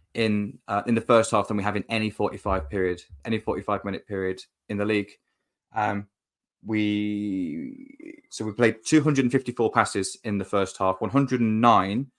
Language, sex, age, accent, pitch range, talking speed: English, male, 20-39, British, 105-130 Hz, 160 wpm